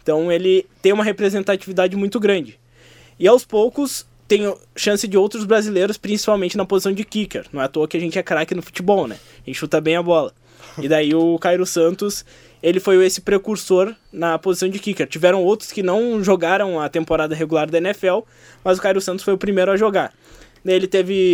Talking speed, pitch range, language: 200 wpm, 165-195 Hz, Portuguese